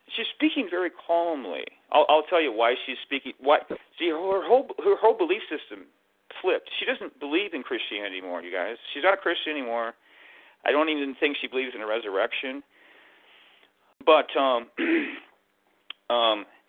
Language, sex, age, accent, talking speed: English, male, 40-59, American, 160 wpm